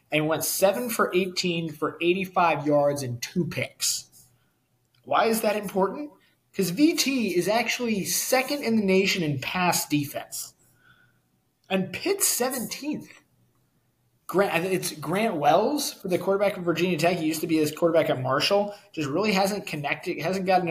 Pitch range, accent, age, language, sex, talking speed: 145-190 Hz, American, 20-39, English, male, 150 wpm